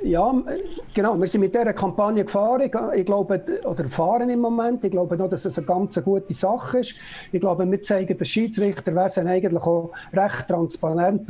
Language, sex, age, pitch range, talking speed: German, male, 60-79, 180-210 Hz, 185 wpm